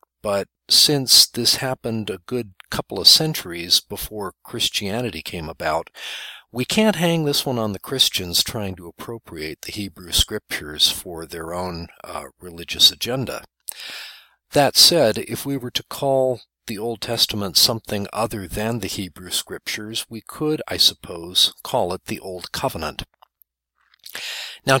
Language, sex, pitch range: English, male, 95-125 Hz